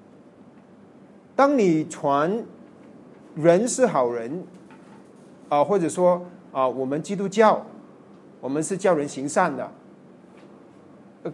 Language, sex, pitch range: Chinese, male, 155-200 Hz